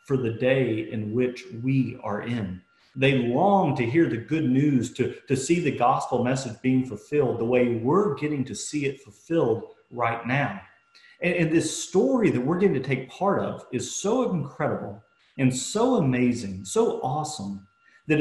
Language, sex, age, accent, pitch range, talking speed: English, male, 40-59, American, 125-170 Hz, 175 wpm